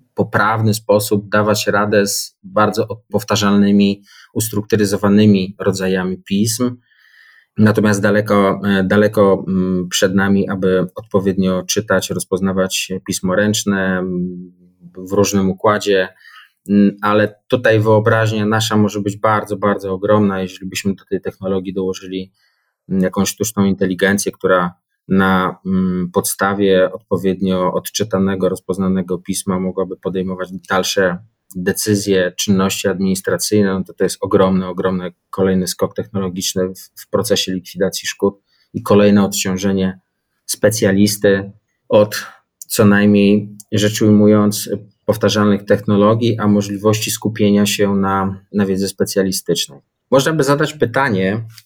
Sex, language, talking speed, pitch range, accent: male, Polish, 105 wpm, 95-105 Hz, native